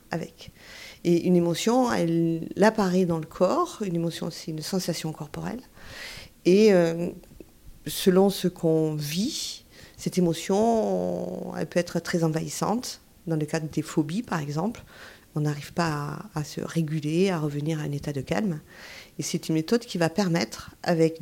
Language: French